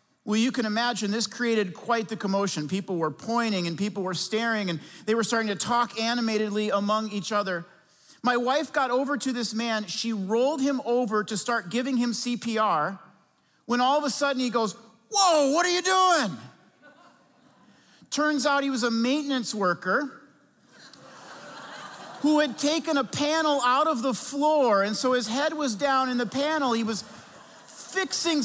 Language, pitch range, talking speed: English, 220-280 Hz, 175 wpm